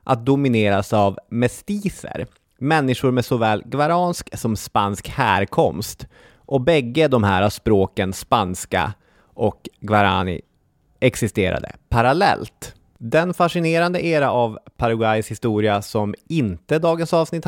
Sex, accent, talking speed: male, native, 105 wpm